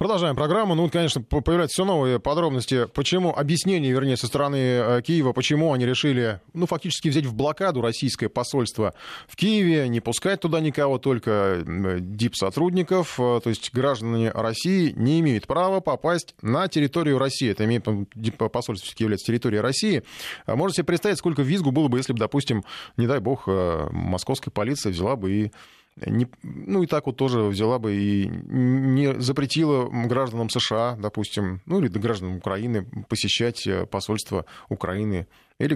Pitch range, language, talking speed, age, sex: 100-135 Hz, Russian, 150 wpm, 20-39, male